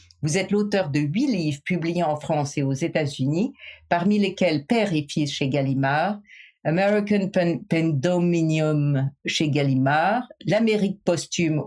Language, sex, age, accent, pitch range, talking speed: French, female, 50-69, French, 140-175 Hz, 130 wpm